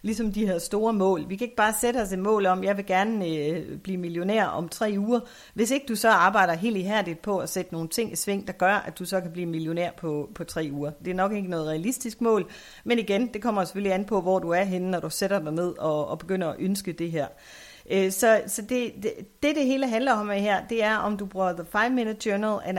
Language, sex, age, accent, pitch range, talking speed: Danish, female, 40-59, native, 175-215 Hz, 260 wpm